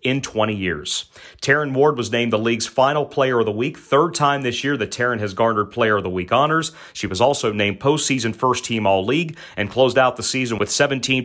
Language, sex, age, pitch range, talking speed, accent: English, male, 30-49, 110-140 Hz, 230 wpm, American